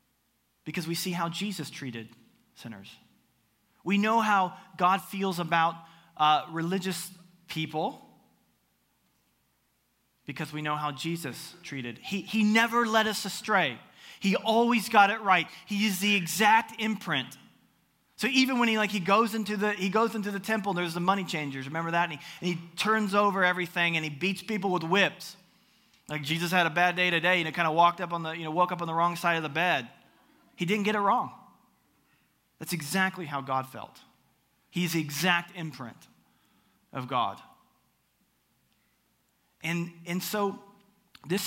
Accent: American